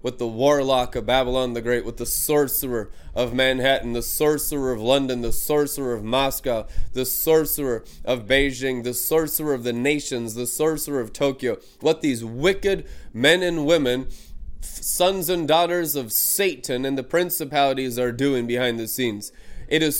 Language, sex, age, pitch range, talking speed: English, male, 20-39, 125-160 Hz, 160 wpm